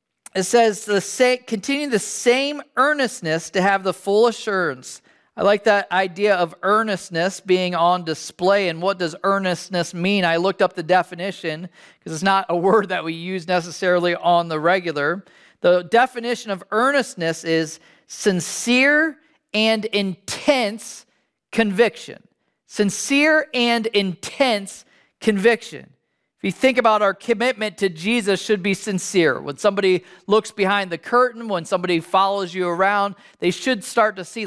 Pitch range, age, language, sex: 180-230 Hz, 40-59, English, male